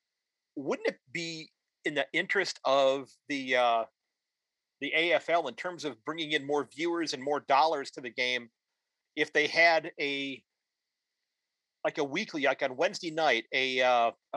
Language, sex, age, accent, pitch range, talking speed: English, male, 40-59, American, 140-205 Hz, 155 wpm